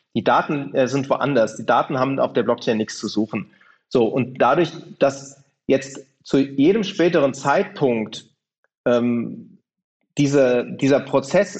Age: 40-59